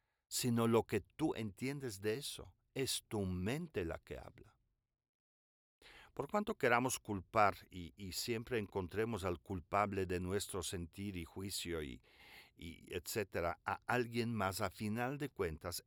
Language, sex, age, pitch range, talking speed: Spanish, male, 50-69, 90-125 Hz, 145 wpm